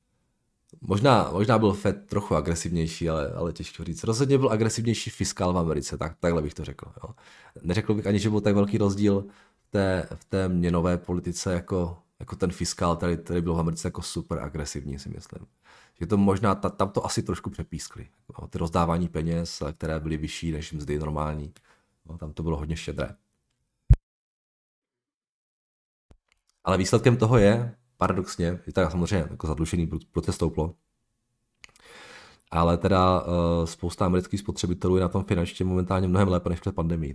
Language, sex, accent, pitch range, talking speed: Czech, male, native, 85-100 Hz, 165 wpm